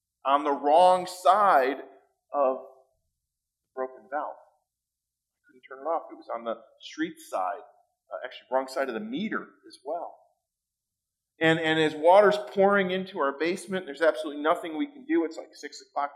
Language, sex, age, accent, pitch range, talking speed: English, male, 40-59, American, 115-190 Hz, 165 wpm